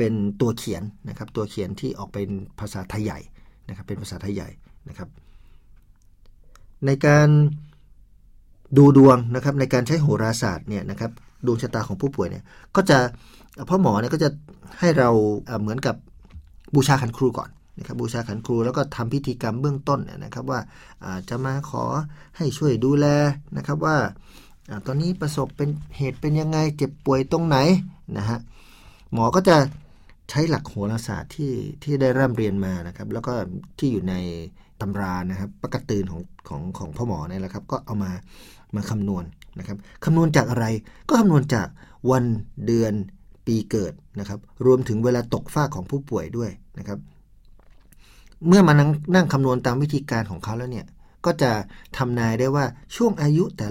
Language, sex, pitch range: Thai, male, 100-145 Hz